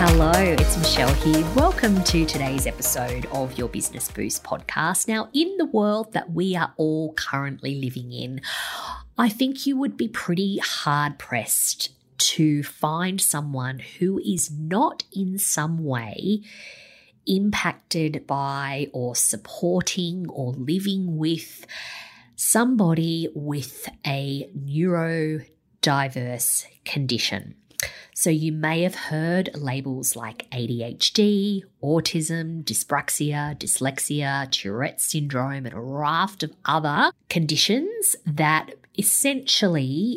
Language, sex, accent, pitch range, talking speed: English, female, Australian, 140-185 Hz, 110 wpm